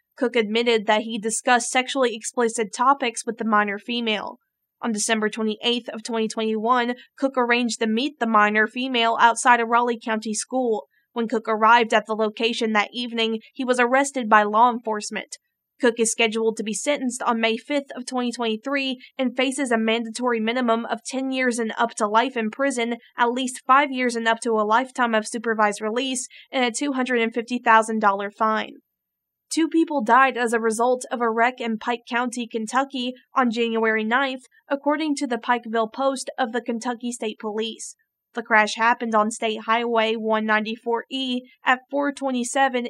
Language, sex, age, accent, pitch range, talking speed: English, female, 20-39, American, 225-250 Hz, 165 wpm